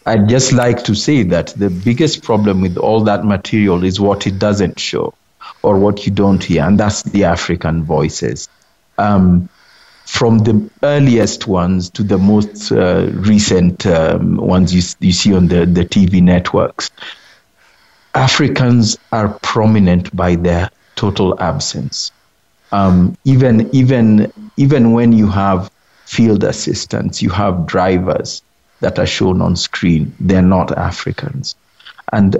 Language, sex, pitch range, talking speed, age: English, male, 95-125 Hz, 140 wpm, 50-69